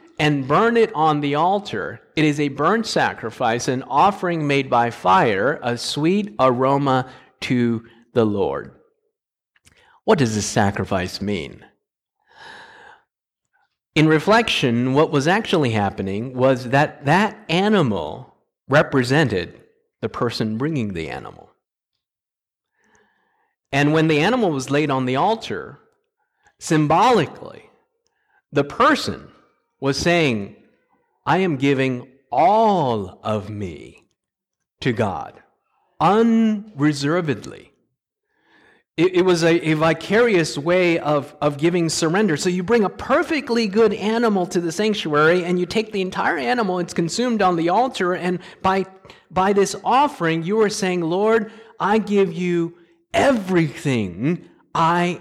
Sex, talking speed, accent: male, 120 wpm, American